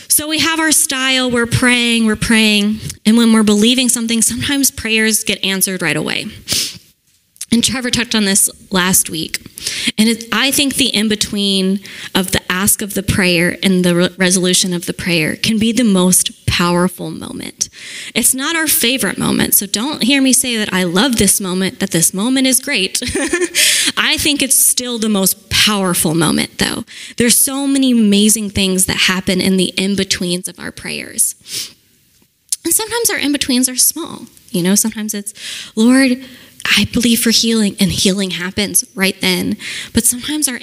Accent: American